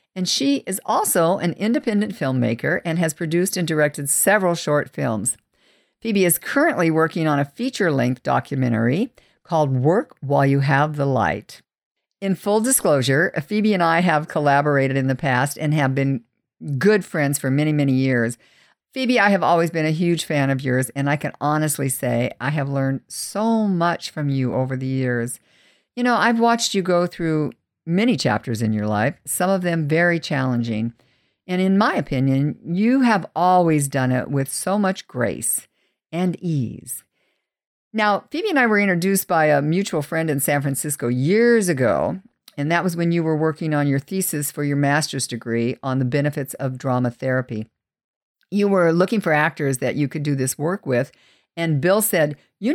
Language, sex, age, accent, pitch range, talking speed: English, female, 50-69, American, 135-185 Hz, 180 wpm